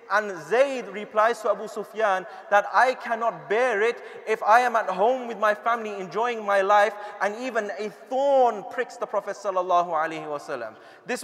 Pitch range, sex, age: 200-240 Hz, male, 30-49